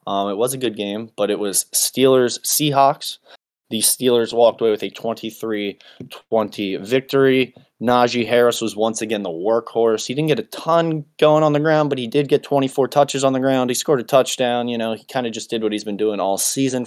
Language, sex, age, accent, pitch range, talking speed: English, male, 20-39, American, 105-140 Hz, 215 wpm